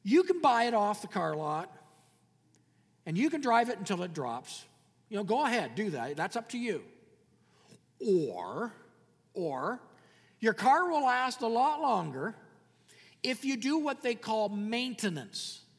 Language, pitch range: English, 205-260 Hz